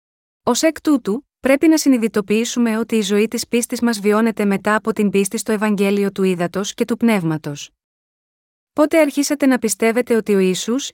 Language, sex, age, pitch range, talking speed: Greek, female, 30-49, 205-245 Hz, 170 wpm